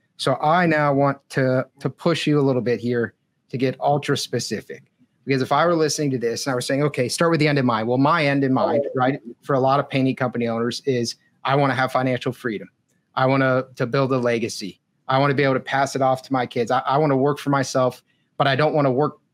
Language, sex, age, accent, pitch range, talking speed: English, male, 30-49, American, 130-145 Hz, 265 wpm